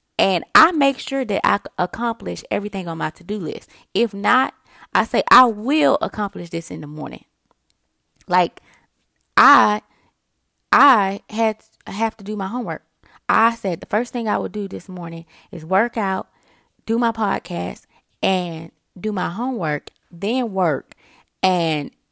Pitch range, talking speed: 165-220 Hz, 150 wpm